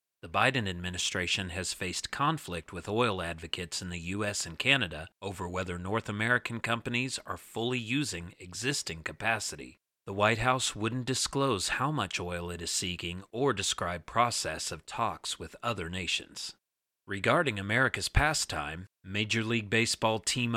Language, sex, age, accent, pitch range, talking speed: English, male, 40-59, American, 95-125 Hz, 145 wpm